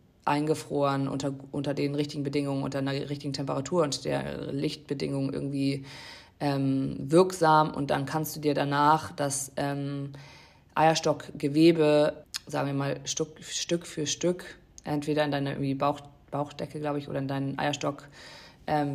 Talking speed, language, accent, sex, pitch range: 140 wpm, German, German, female, 140-155 Hz